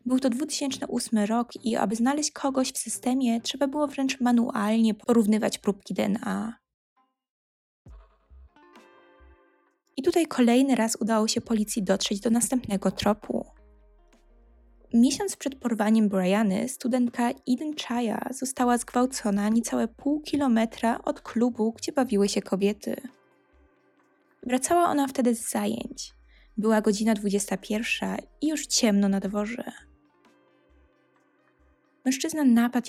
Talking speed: 110 wpm